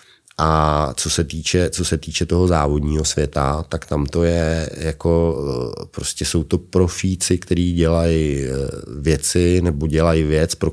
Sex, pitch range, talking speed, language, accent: male, 75-85 Hz, 145 wpm, Czech, native